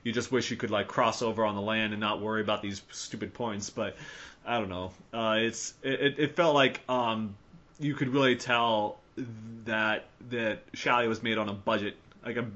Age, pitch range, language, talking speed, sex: 30-49, 105-125 Hz, English, 205 wpm, male